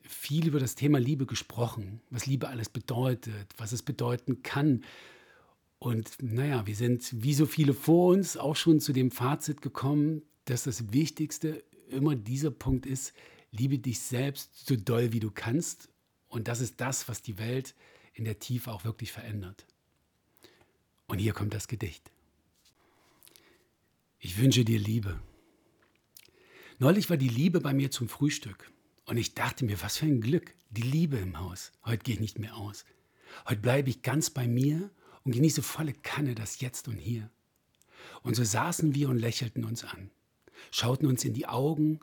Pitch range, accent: 115-145 Hz, German